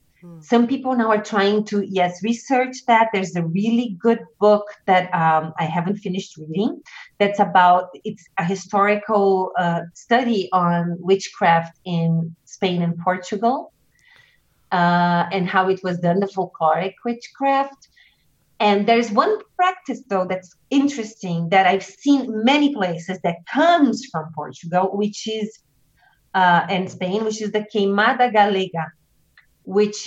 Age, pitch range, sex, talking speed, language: 30-49, 185-235 Hz, female, 140 wpm, English